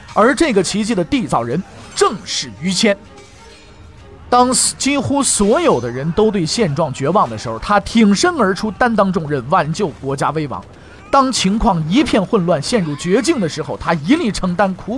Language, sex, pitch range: Chinese, male, 130-215 Hz